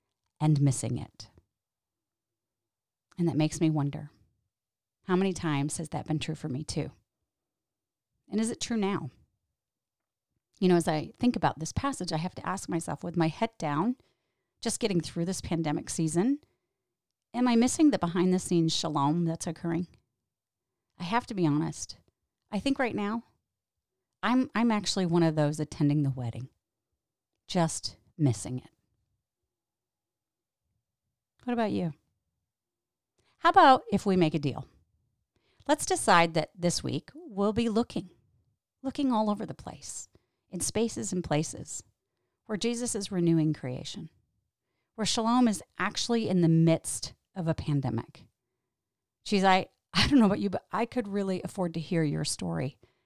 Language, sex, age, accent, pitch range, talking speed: English, female, 30-49, American, 130-195 Hz, 150 wpm